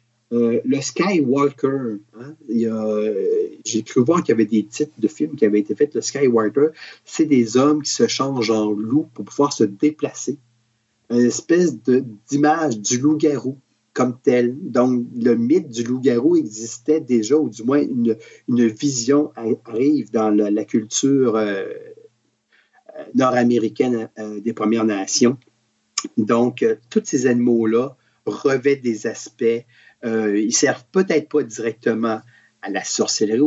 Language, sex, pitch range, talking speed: French, male, 110-145 Hz, 155 wpm